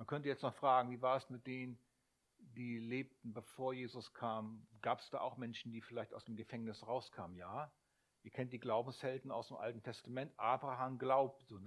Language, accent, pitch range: German, German, 115-145 Hz